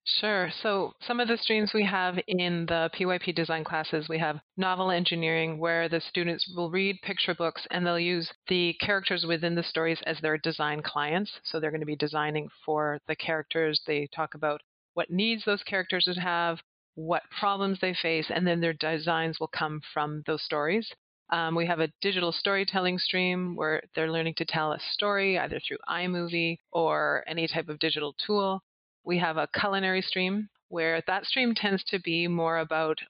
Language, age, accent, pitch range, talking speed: English, 30-49, American, 160-185 Hz, 185 wpm